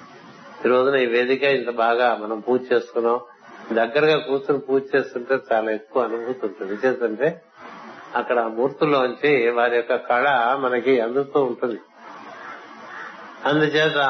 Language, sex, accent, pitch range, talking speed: Telugu, male, native, 115-130 Hz, 110 wpm